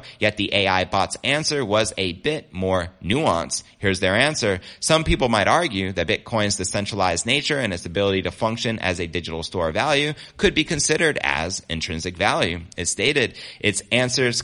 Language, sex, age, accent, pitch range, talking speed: English, male, 30-49, American, 90-120 Hz, 170 wpm